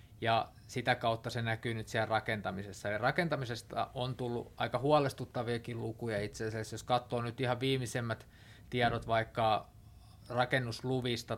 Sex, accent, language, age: male, native, Finnish, 20-39